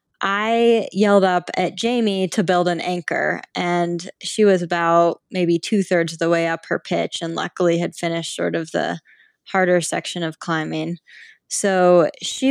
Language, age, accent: English, 10-29, American